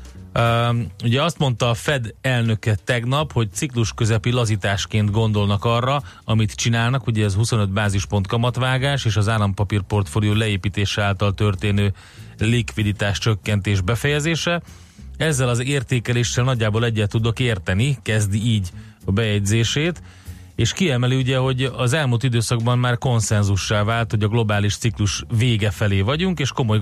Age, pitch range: 30-49, 105-120 Hz